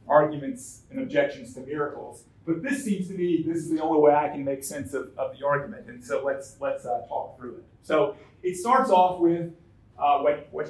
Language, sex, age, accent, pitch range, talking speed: English, male, 40-59, American, 120-180 Hz, 220 wpm